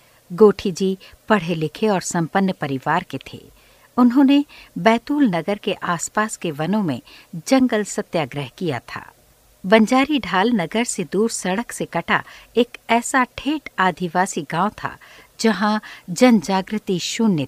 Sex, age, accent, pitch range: female, 60-79, native, 170-225 Hz